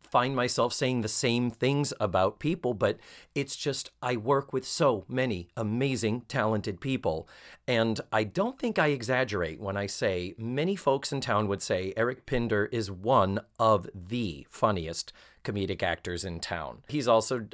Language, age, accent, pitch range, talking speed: English, 30-49, American, 100-125 Hz, 160 wpm